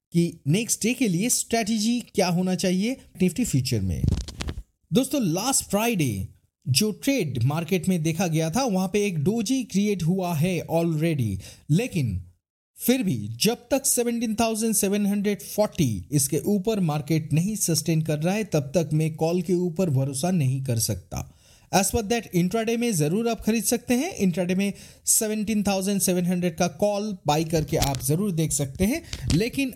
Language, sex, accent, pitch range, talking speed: Hindi, male, native, 155-220 Hz, 155 wpm